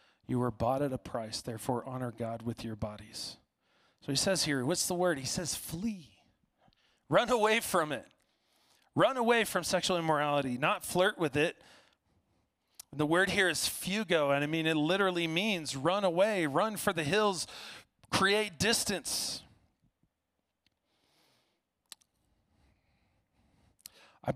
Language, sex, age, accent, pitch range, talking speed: English, male, 40-59, American, 125-165 Hz, 135 wpm